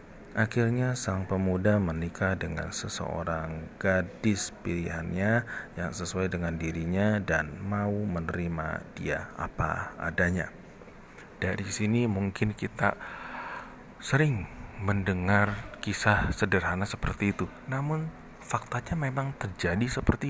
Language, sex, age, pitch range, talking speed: Indonesian, male, 40-59, 90-115 Hz, 100 wpm